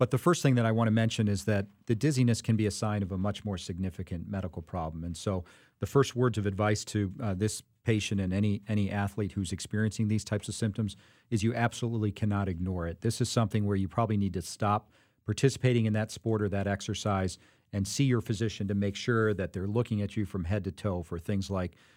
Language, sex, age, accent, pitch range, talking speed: English, male, 40-59, American, 100-120 Hz, 235 wpm